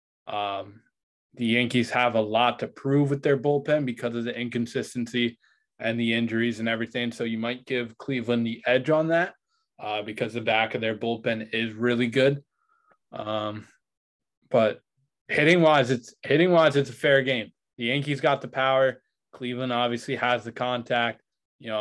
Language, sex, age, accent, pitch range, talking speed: English, male, 20-39, American, 115-135 Hz, 170 wpm